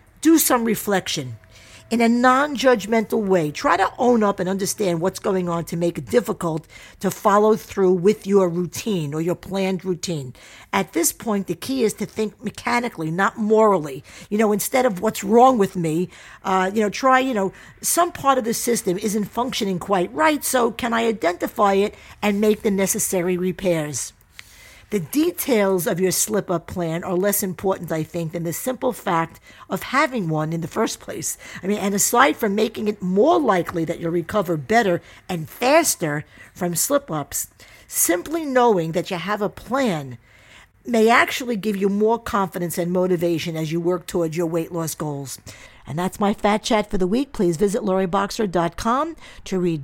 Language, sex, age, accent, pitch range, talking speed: English, female, 50-69, American, 175-225 Hz, 185 wpm